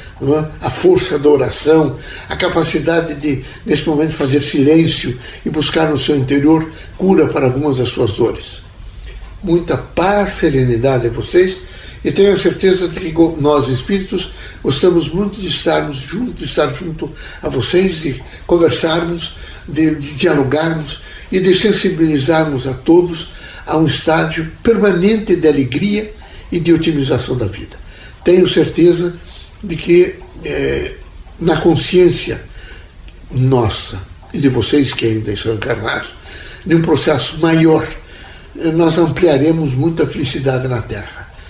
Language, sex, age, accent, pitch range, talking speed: Portuguese, male, 60-79, Brazilian, 130-170 Hz, 130 wpm